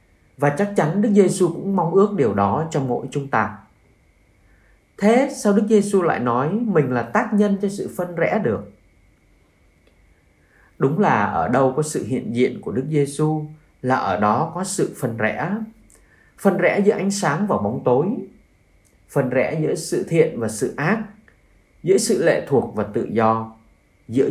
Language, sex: Vietnamese, male